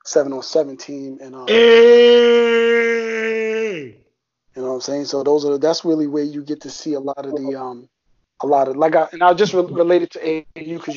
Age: 30-49